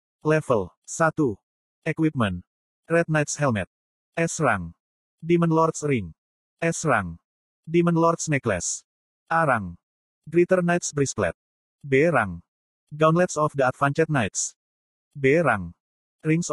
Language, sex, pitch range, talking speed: Indonesian, male, 115-155 Hz, 95 wpm